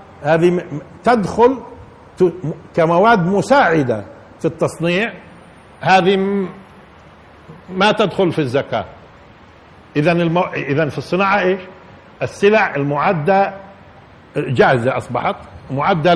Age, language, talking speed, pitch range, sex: 50-69, Arabic, 80 wpm, 145-200 Hz, male